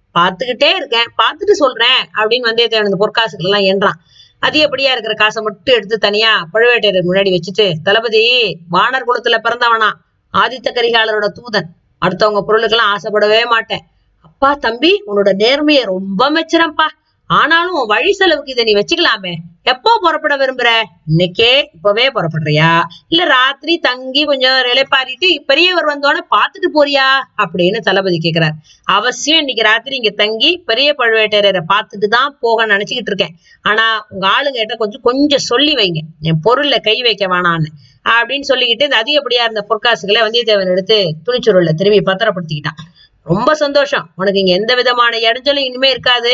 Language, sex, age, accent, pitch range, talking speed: Tamil, female, 30-49, native, 195-265 Hz, 135 wpm